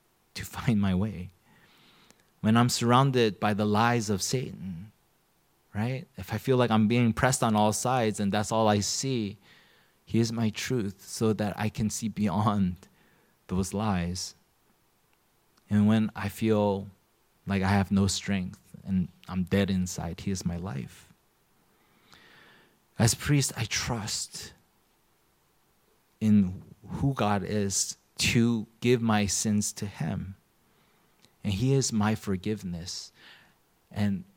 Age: 30-49